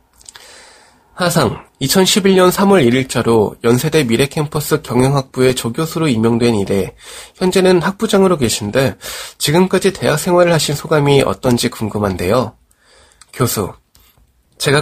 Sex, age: male, 20-39